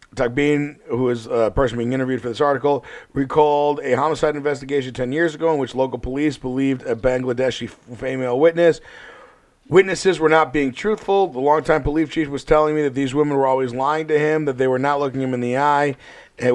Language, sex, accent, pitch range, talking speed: English, male, American, 130-160 Hz, 205 wpm